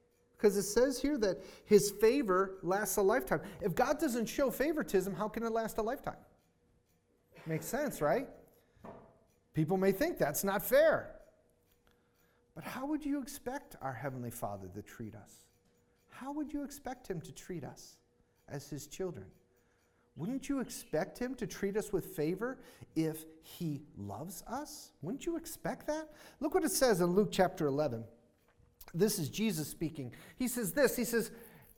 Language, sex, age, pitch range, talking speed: English, male, 40-59, 155-240 Hz, 160 wpm